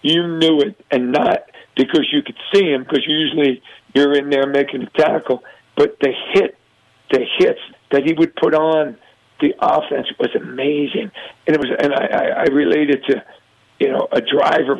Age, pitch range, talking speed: 50-69, 145-200 Hz, 185 wpm